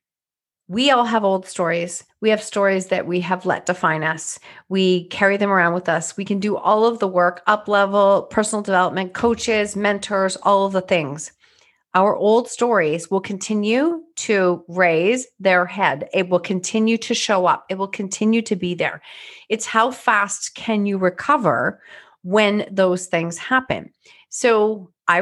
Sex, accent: female, American